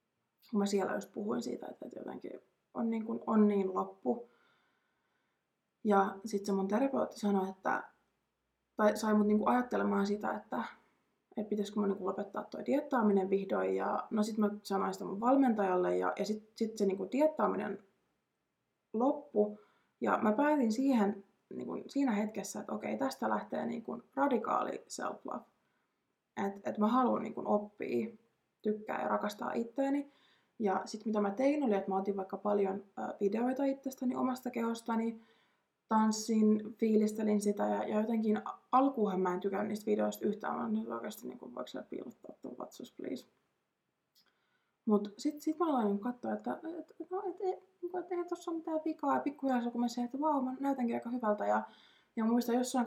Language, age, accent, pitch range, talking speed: Finnish, 20-39, native, 200-250 Hz, 165 wpm